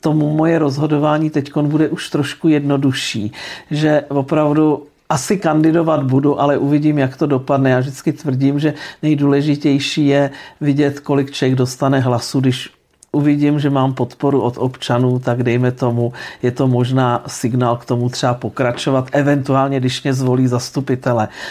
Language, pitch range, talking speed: Czech, 130-145 Hz, 145 wpm